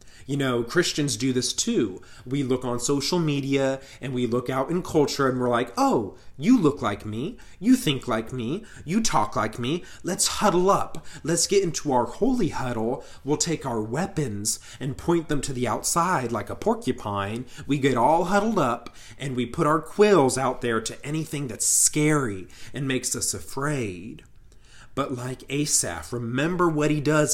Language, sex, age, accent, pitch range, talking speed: English, male, 30-49, American, 115-150 Hz, 180 wpm